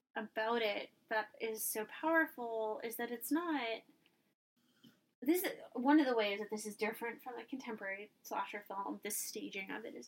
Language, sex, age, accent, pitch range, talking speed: English, female, 20-39, American, 200-245 Hz, 180 wpm